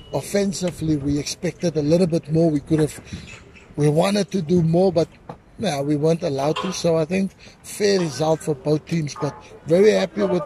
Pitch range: 160-205 Hz